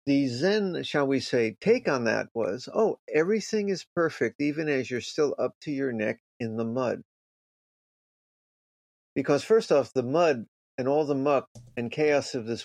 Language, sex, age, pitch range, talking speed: English, male, 50-69, 125-175 Hz, 175 wpm